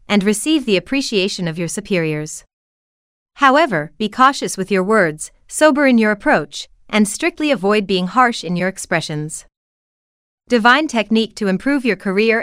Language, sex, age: English, female, 30-49